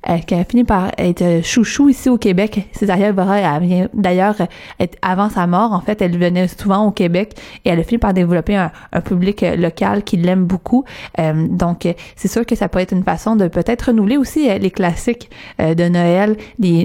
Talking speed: 195 wpm